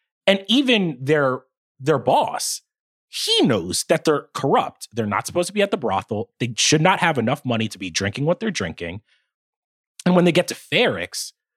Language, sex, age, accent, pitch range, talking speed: English, male, 30-49, American, 115-170 Hz, 185 wpm